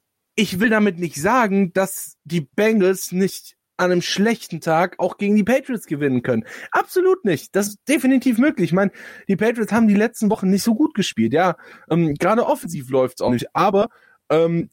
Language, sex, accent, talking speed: German, male, German, 185 wpm